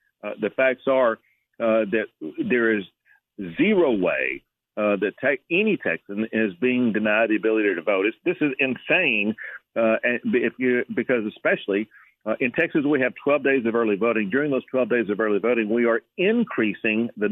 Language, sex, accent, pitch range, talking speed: English, male, American, 110-130 Hz, 180 wpm